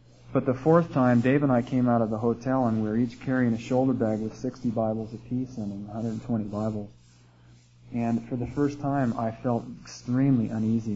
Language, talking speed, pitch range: English, 195 wpm, 110-125 Hz